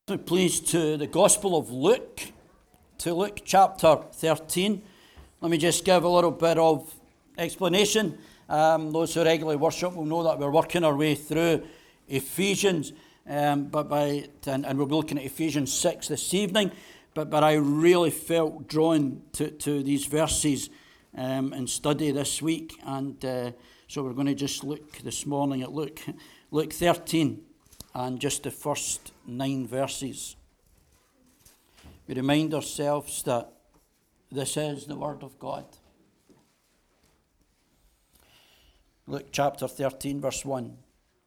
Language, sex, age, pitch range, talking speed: English, male, 60-79, 140-175 Hz, 140 wpm